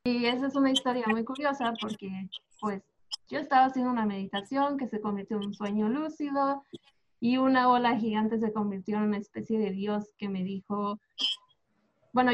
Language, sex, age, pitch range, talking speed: Spanish, female, 20-39, 210-255 Hz, 175 wpm